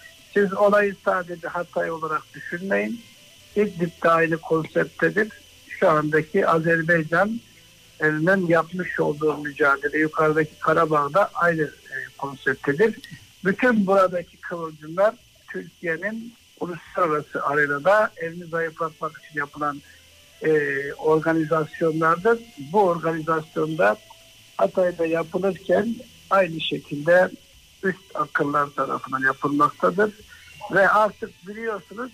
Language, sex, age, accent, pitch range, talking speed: Turkish, male, 60-79, native, 155-195 Hz, 85 wpm